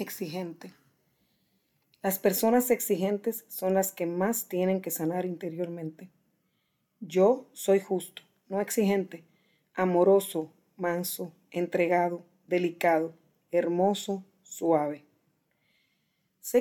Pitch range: 170-200 Hz